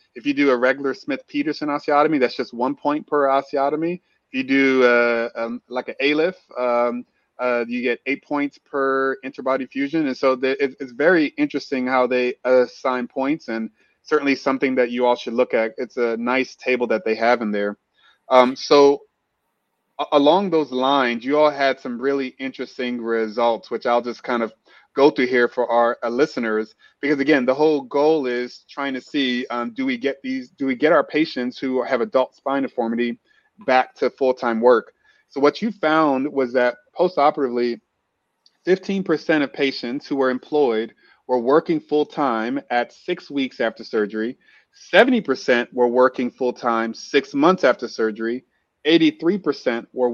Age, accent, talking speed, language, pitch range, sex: 20-39, American, 170 wpm, English, 120-145 Hz, male